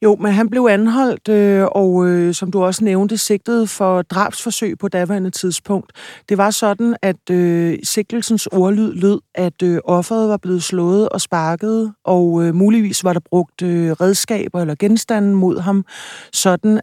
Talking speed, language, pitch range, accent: 145 wpm, Danish, 175-205 Hz, native